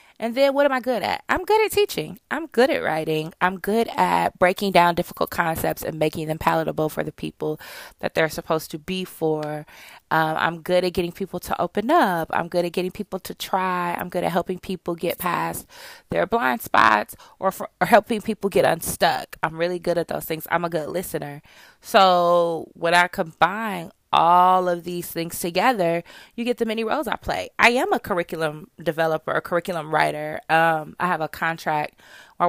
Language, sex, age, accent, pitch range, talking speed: English, female, 20-39, American, 165-225 Hz, 200 wpm